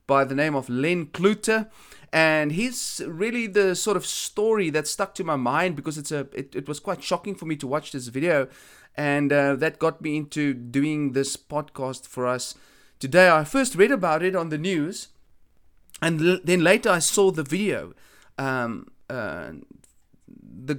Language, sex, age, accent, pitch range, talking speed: English, male, 30-49, South African, 145-195 Hz, 180 wpm